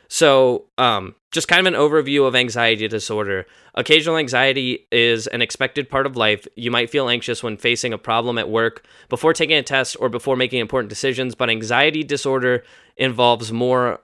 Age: 10-29